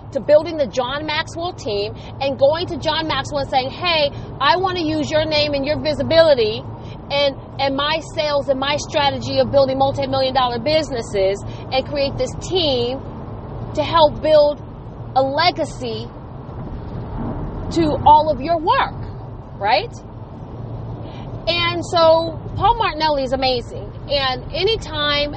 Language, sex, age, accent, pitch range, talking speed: English, female, 40-59, American, 255-325 Hz, 135 wpm